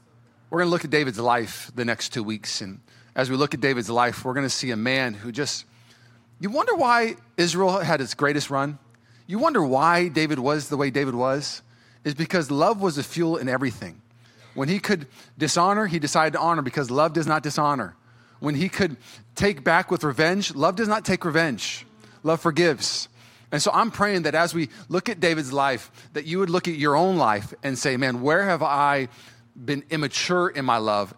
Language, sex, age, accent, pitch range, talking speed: English, male, 30-49, American, 120-180 Hz, 210 wpm